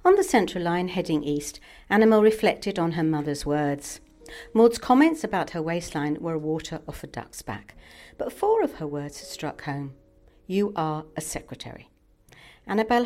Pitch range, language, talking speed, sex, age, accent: 155-220 Hz, English, 160 wpm, female, 60-79, British